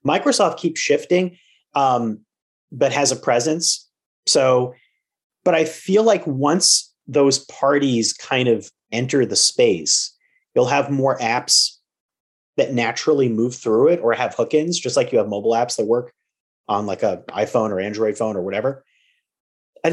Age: 30-49